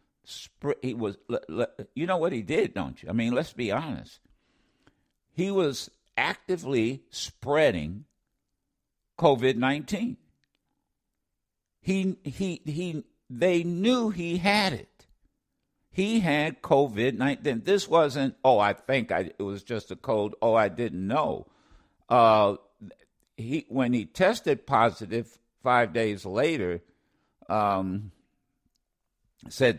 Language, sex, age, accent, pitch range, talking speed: English, male, 60-79, American, 110-180 Hz, 115 wpm